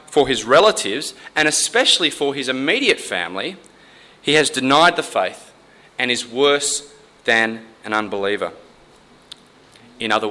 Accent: Australian